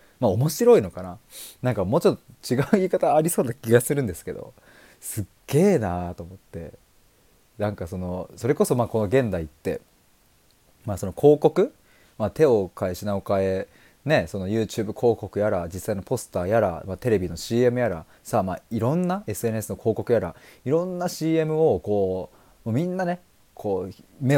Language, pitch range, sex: Japanese, 95-155 Hz, male